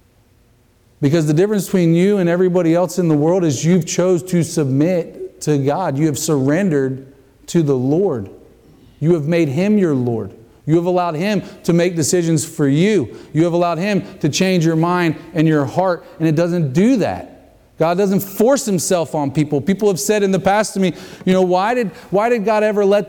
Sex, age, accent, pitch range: male, 40-59, American, 150-190 Hz